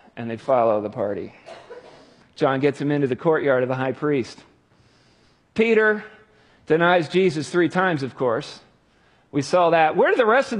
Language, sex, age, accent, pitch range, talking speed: English, male, 40-59, American, 150-205 Hz, 170 wpm